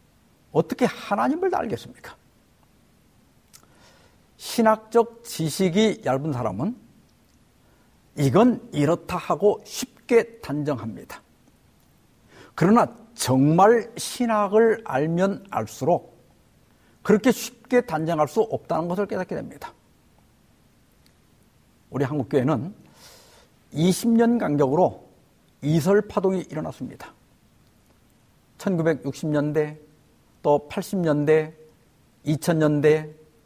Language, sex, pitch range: Korean, male, 150-215 Hz